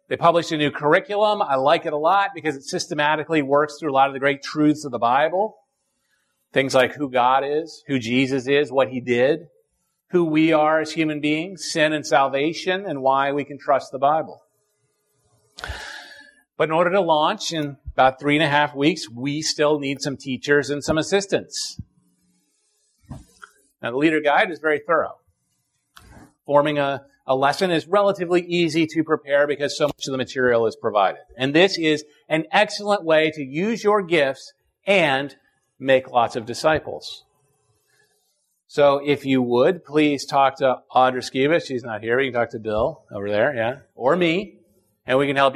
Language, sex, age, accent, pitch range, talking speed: English, male, 40-59, American, 135-160 Hz, 180 wpm